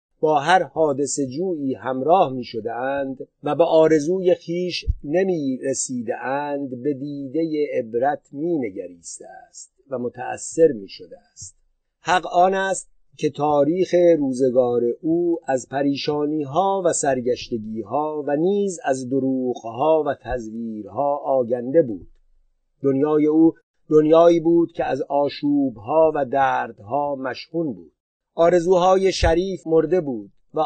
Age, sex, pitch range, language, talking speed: 50-69, male, 130-160 Hz, Persian, 115 wpm